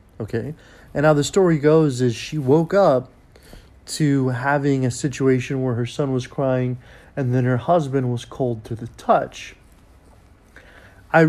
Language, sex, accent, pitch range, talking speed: English, male, American, 120-145 Hz, 155 wpm